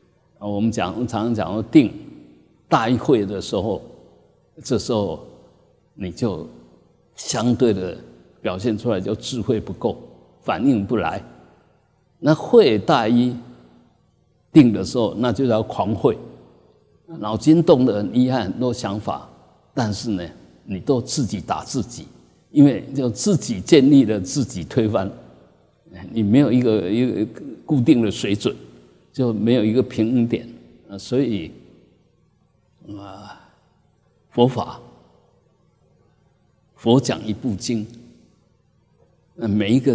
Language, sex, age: Chinese, male, 50-69